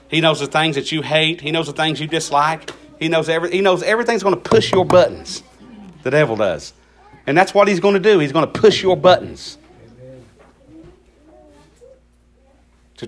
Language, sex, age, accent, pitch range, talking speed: English, male, 40-59, American, 115-165 Hz, 190 wpm